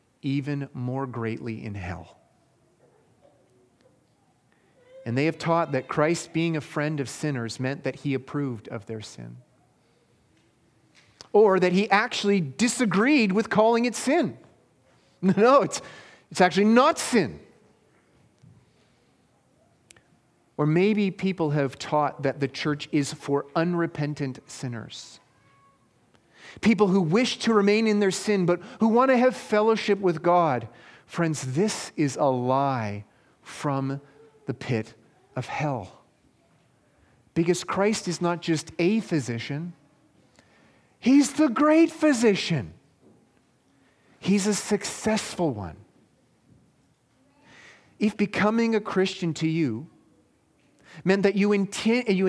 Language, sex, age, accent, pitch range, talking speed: English, male, 40-59, American, 135-205 Hz, 115 wpm